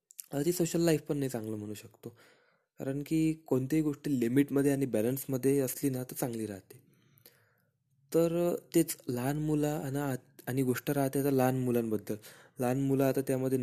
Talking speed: 100 wpm